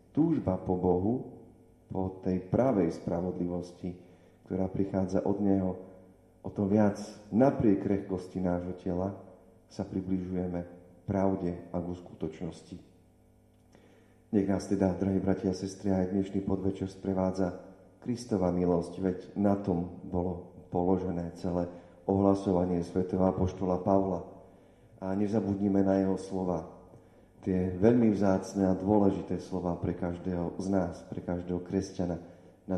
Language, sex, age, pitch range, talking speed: Slovak, male, 40-59, 90-100 Hz, 120 wpm